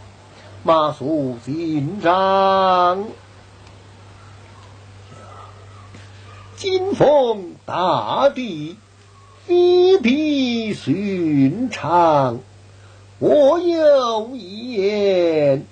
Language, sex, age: Chinese, male, 50-69